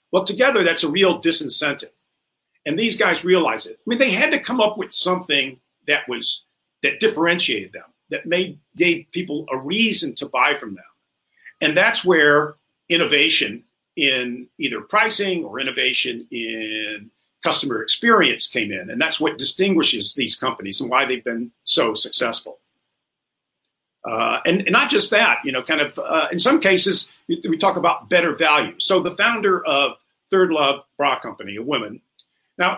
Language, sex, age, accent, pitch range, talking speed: English, male, 50-69, American, 150-240 Hz, 165 wpm